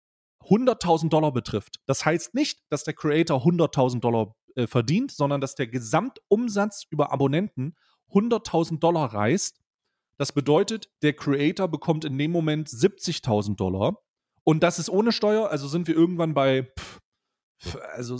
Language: German